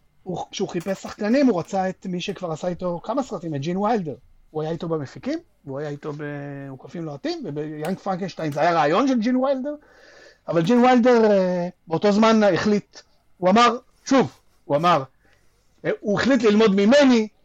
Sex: male